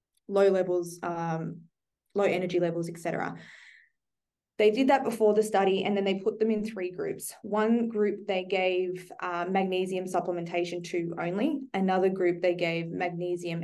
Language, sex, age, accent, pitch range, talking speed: English, female, 20-39, Australian, 175-205 Hz, 155 wpm